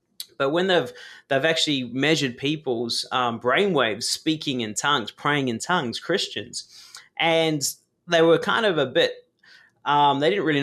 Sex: male